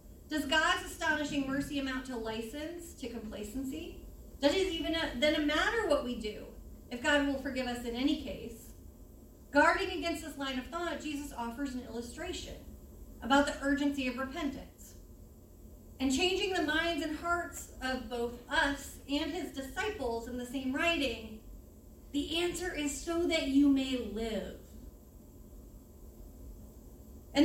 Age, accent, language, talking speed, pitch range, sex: 30-49, American, English, 145 wpm, 250-325 Hz, female